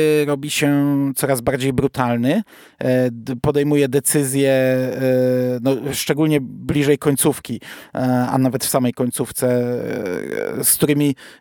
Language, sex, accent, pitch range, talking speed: Polish, male, native, 135-170 Hz, 95 wpm